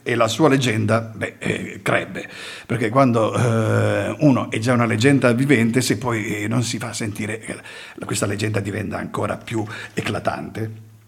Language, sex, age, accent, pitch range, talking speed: Italian, male, 50-69, native, 110-155 Hz, 135 wpm